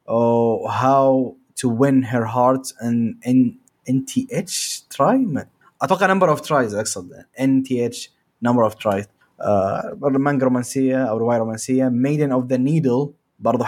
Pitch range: 120-145 Hz